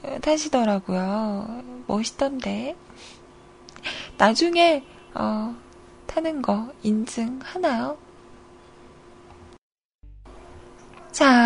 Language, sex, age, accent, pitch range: Korean, female, 20-39, native, 220-335 Hz